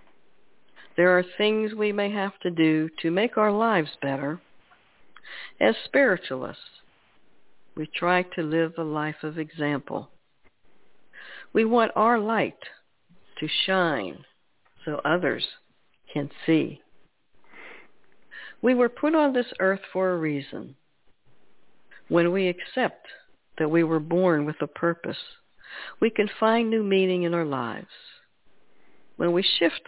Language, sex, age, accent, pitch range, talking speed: English, female, 60-79, American, 160-215 Hz, 125 wpm